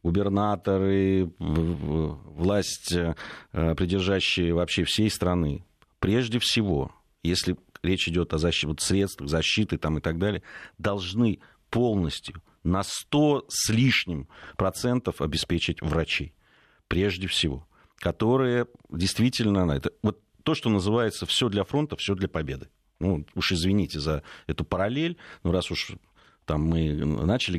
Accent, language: native, Russian